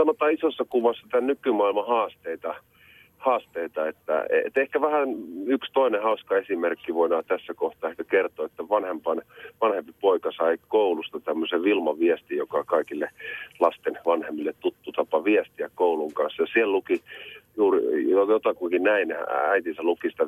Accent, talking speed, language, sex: native, 130 wpm, Finnish, male